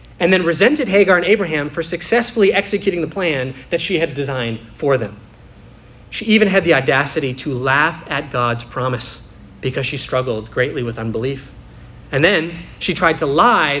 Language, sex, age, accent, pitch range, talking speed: English, male, 30-49, American, 120-165 Hz, 170 wpm